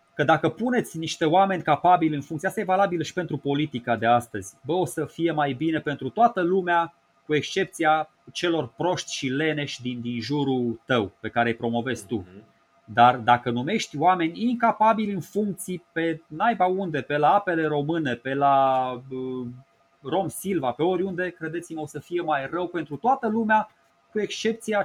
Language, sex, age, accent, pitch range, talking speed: Romanian, male, 30-49, native, 125-180 Hz, 170 wpm